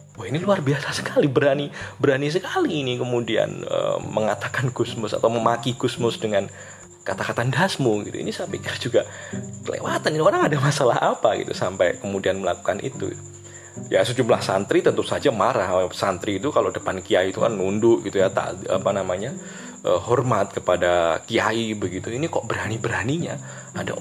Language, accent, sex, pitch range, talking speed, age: Indonesian, native, male, 100-140 Hz, 150 wpm, 20-39